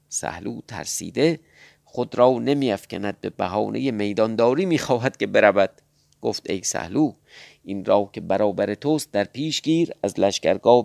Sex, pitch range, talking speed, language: male, 105-160 Hz, 135 wpm, Persian